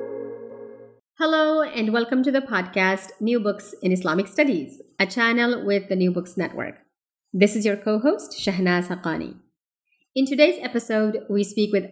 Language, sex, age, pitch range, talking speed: English, female, 30-49, 190-235 Hz, 150 wpm